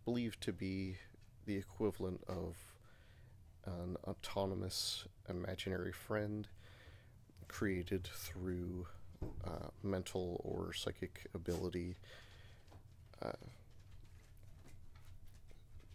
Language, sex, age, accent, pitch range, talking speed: English, male, 30-49, American, 95-105 Hz, 70 wpm